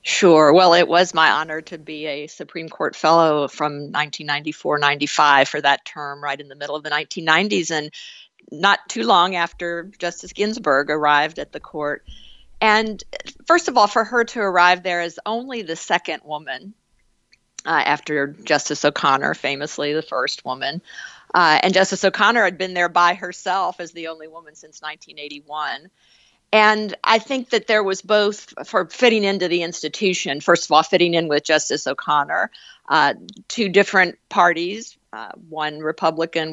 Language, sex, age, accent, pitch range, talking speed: English, female, 50-69, American, 150-185 Hz, 160 wpm